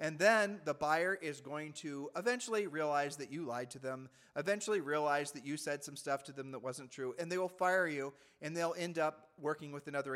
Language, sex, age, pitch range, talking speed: English, male, 40-59, 140-180 Hz, 225 wpm